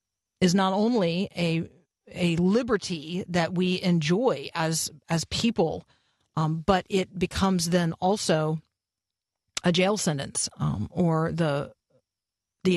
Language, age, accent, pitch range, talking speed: English, 40-59, American, 165-195 Hz, 120 wpm